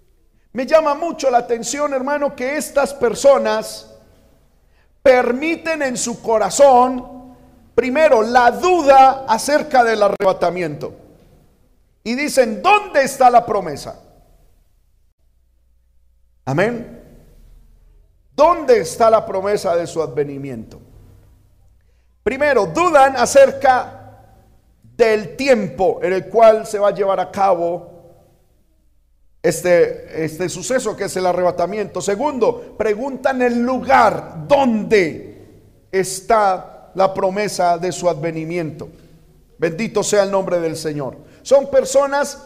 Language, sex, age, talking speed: Spanish, male, 50-69, 105 wpm